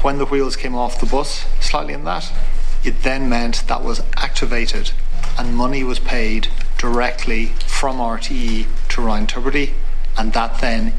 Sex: male